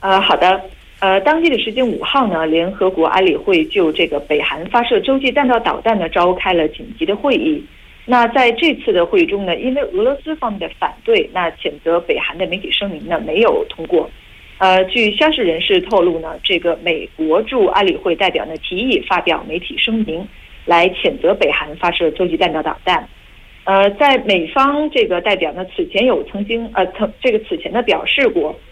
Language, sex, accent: Korean, female, Chinese